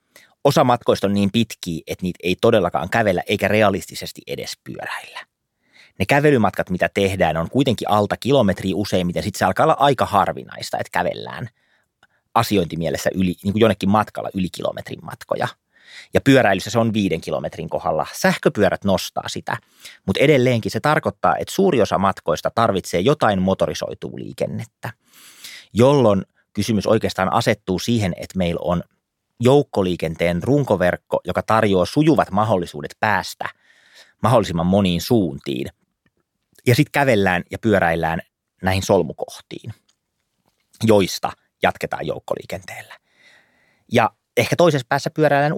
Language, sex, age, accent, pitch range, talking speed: Finnish, male, 30-49, native, 90-120 Hz, 125 wpm